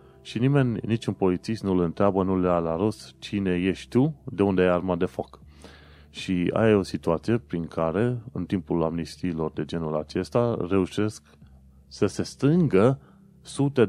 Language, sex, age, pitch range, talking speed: Romanian, male, 30-49, 80-100 Hz, 165 wpm